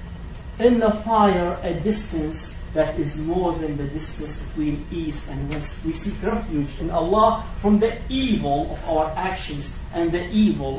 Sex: male